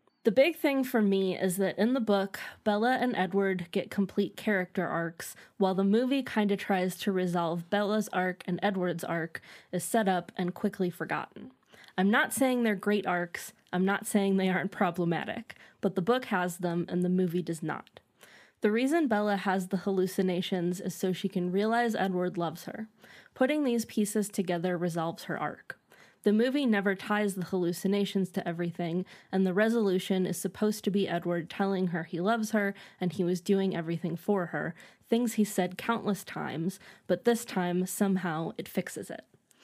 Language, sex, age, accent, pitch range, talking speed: English, female, 20-39, American, 180-210 Hz, 180 wpm